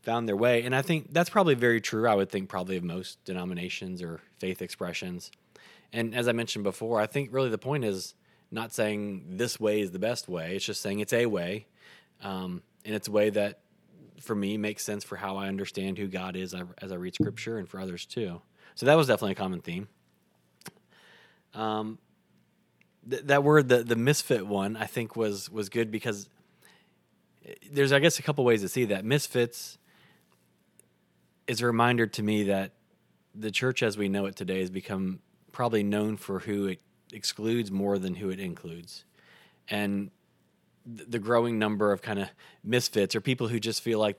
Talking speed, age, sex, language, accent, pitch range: 195 wpm, 20-39, male, English, American, 95-115 Hz